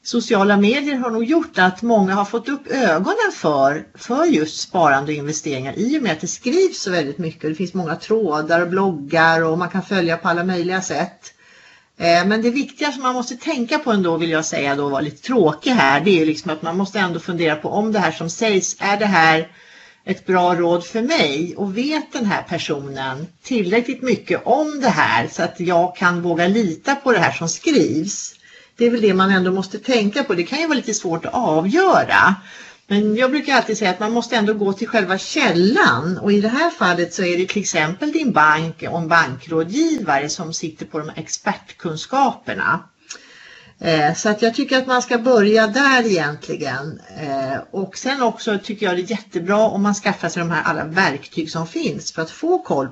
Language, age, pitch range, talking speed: Swedish, 40-59, 165-235 Hz, 205 wpm